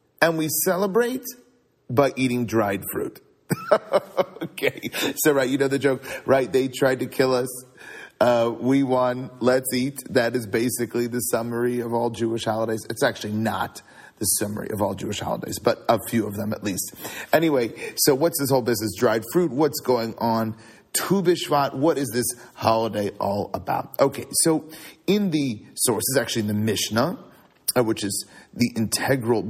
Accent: American